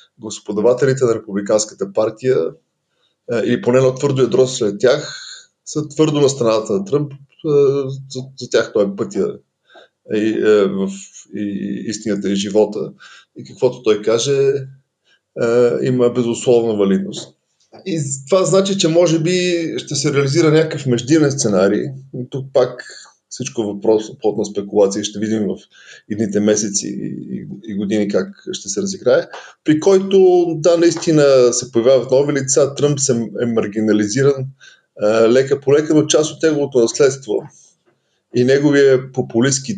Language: Bulgarian